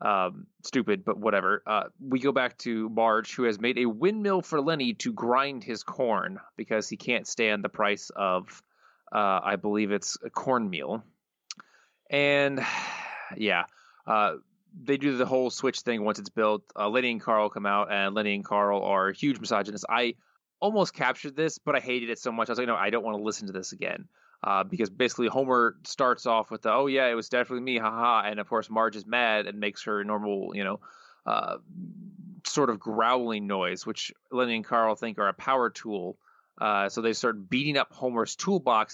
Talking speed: 200 wpm